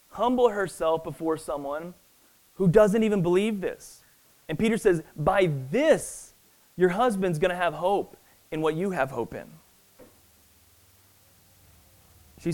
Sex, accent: male, American